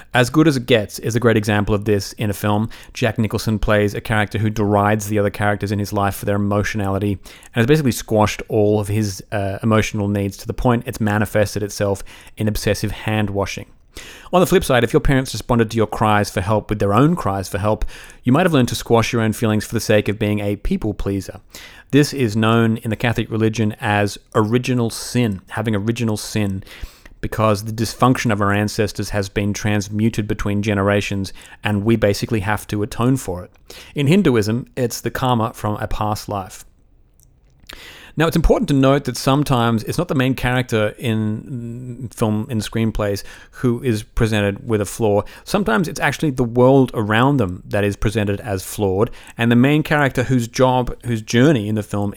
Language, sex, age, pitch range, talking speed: English, male, 30-49, 105-120 Hz, 195 wpm